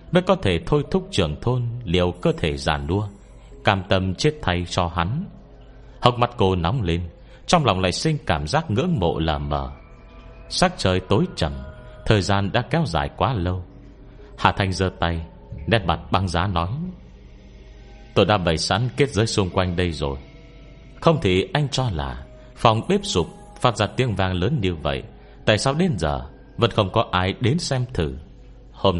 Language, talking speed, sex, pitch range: Vietnamese, 185 wpm, male, 85-125 Hz